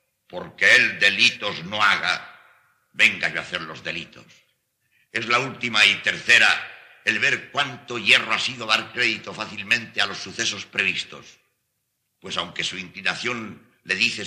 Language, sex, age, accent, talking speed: Spanish, male, 60-79, Spanish, 145 wpm